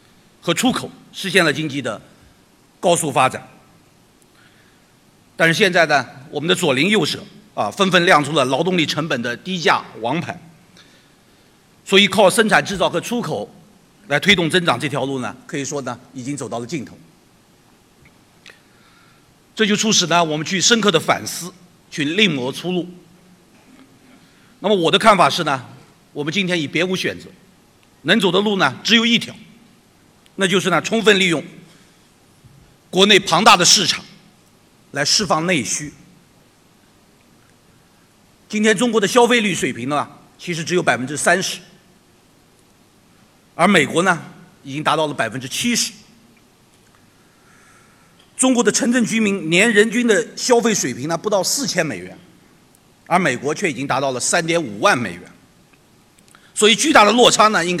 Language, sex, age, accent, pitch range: Chinese, male, 50-69, native, 150-210 Hz